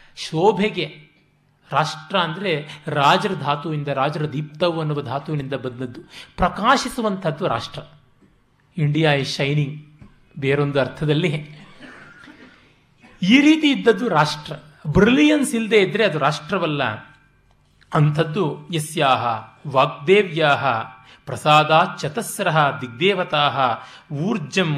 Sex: male